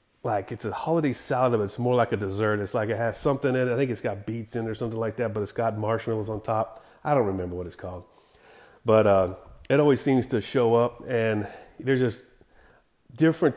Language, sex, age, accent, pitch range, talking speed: English, male, 30-49, American, 110-130 Hz, 235 wpm